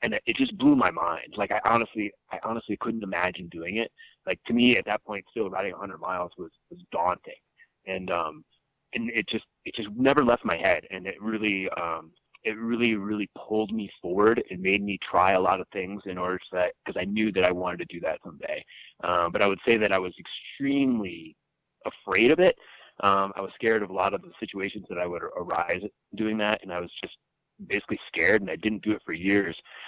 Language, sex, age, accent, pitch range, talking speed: English, male, 30-49, American, 95-115 Hz, 225 wpm